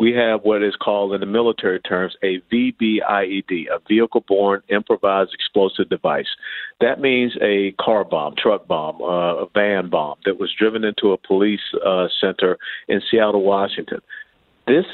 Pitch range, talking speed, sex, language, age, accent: 100-120 Hz, 155 wpm, male, English, 50-69, American